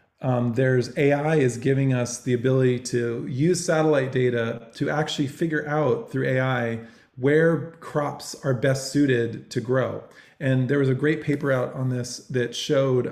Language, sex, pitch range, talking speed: English, male, 120-145 Hz, 165 wpm